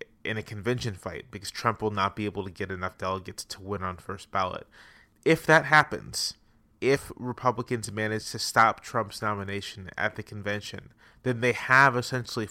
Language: English